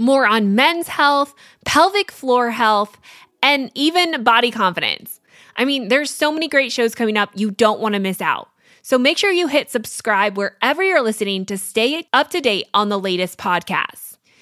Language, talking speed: English, 185 wpm